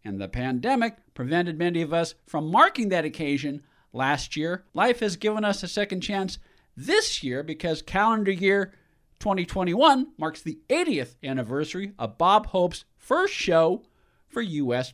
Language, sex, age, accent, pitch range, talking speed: English, male, 50-69, American, 130-200 Hz, 150 wpm